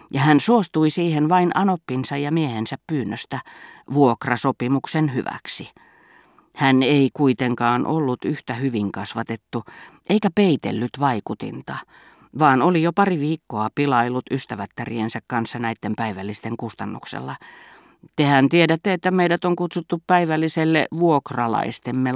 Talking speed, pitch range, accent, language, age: 110 wpm, 120-155 Hz, native, Finnish, 40-59